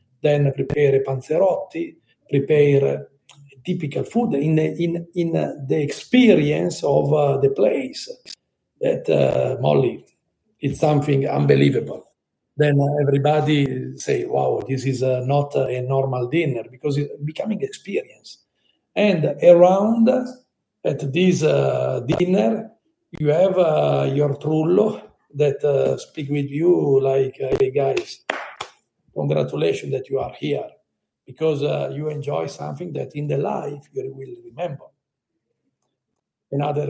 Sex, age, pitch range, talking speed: male, 50-69, 135-170 Hz, 120 wpm